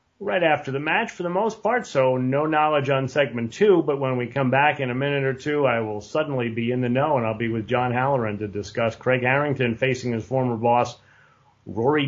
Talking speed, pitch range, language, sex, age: 230 wpm, 120-145 Hz, English, male, 30-49